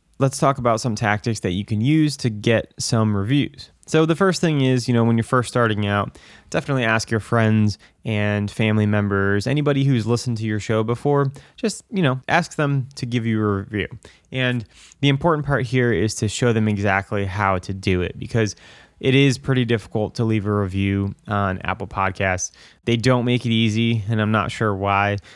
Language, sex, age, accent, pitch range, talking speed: English, male, 20-39, American, 100-125 Hz, 200 wpm